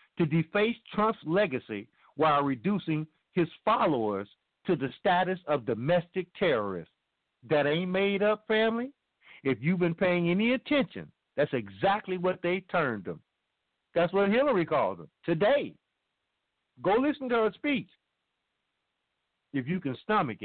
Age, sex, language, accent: 50-69, male, English, American